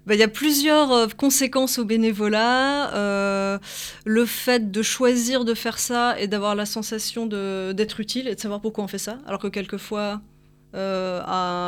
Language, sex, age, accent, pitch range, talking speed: French, female, 20-39, French, 190-225 Hz, 160 wpm